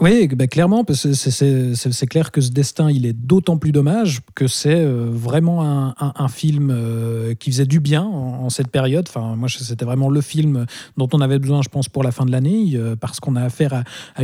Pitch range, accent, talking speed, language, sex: 120-145 Hz, French, 235 wpm, French, male